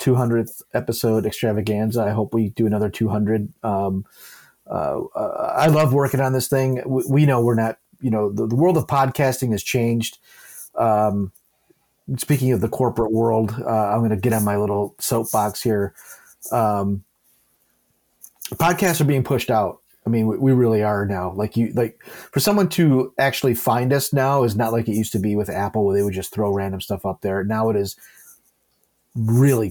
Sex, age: male, 30-49